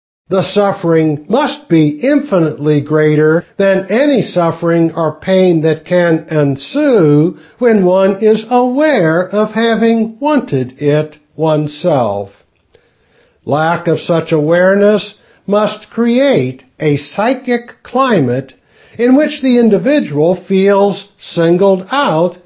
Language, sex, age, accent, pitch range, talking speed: English, male, 60-79, American, 150-225 Hz, 105 wpm